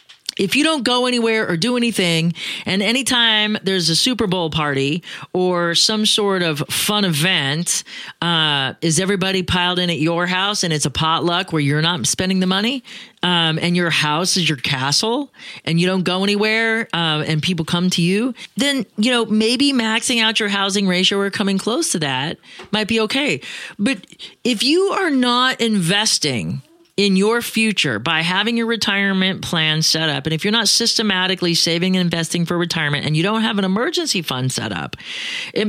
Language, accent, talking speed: English, American, 185 wpm